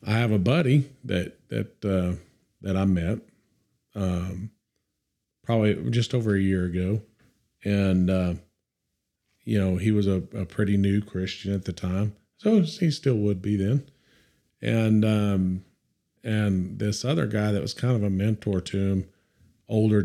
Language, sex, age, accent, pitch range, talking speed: English, male, 40-59, American, 90-105 Hz, 155 wpm